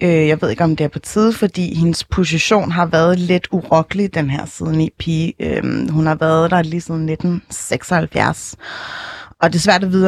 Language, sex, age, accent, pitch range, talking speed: Danish, female, 30-49, native, 145-180 Hz, 195 wpm